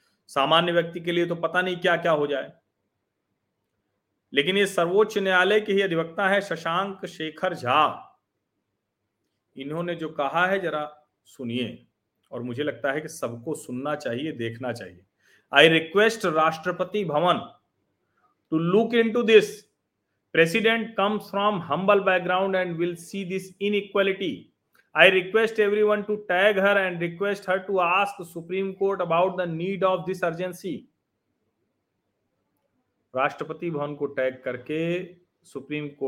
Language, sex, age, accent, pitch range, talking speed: Hindi, male, 40-59, native, 145-185 Hz, 130 wpm